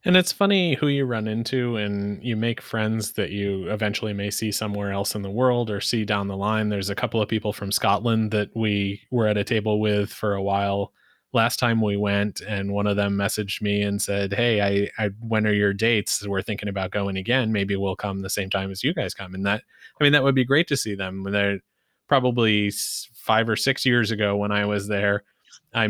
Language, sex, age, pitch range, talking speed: English, male, 20-39, 100-115 Hz, 230 wpm